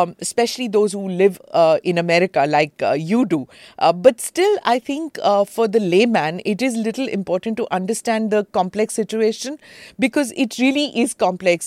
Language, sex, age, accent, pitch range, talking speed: English, female, 50-69, Indian, 175-240 Hz, 175 wpm